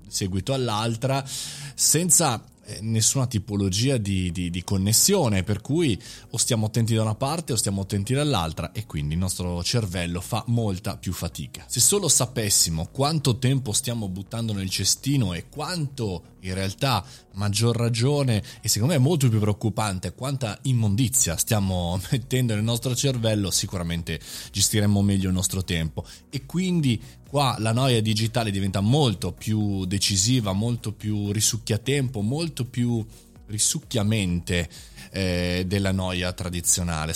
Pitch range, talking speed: 90-120 Hz, 135 wpm